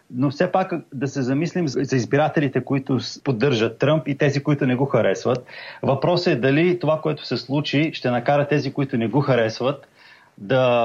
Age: 30-49